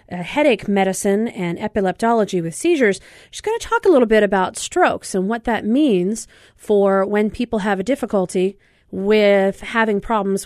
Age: 40-59